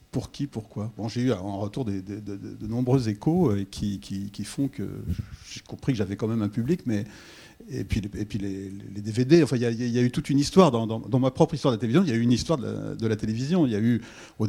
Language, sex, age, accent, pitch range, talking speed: French, male, 40-59, French, 105-135 Hz, 300 wpm